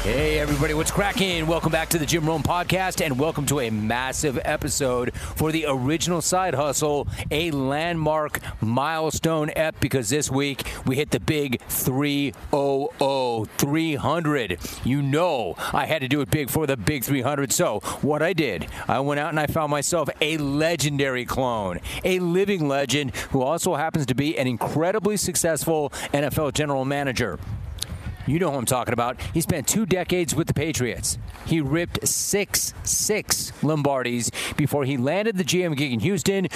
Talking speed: 165 wpm